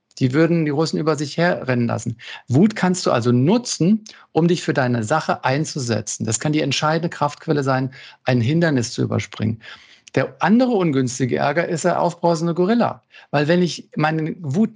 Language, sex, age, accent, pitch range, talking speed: German, male, 50-69, German, 125-175 Hz, 170 wpm